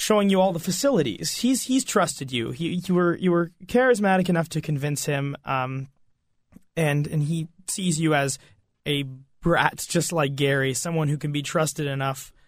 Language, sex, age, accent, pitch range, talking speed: English, male, 20-39, American, 130-160 Hz, 180 wpm